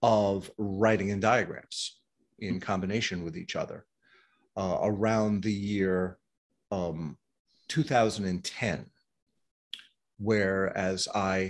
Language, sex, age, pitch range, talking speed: English, male, 40-59, 95-125 Hz, 90 wpm